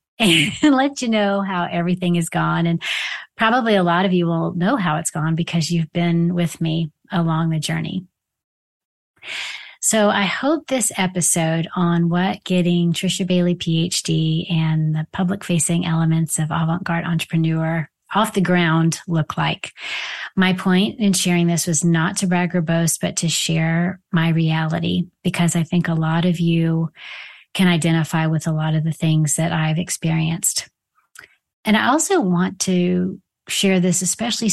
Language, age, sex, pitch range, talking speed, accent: English, 30-49, female, 165-185 Hz, 160 wpm, American